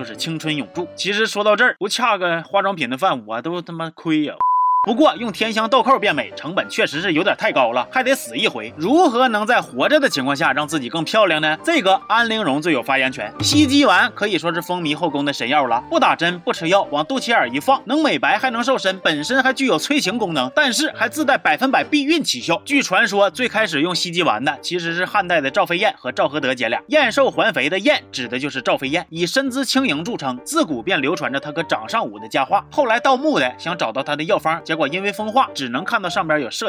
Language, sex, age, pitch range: Chinese, male, 30-49, 170-275 Hz